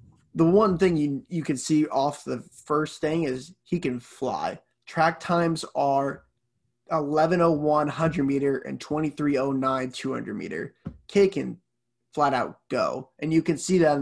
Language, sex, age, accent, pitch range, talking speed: English, male, 20-39, American, 135-160 Hz, 140 wpm